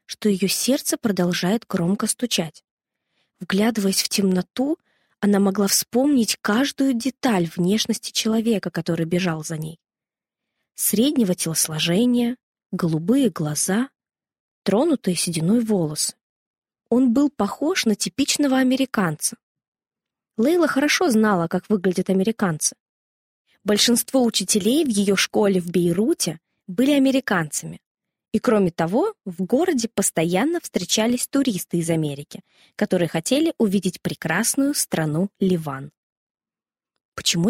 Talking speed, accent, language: 105 wpm, native, Russian